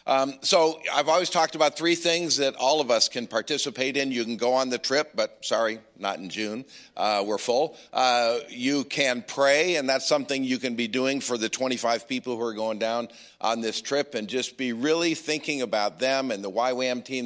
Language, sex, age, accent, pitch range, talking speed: English, male, 50-69, American, 115-145 Hz, 215 wpm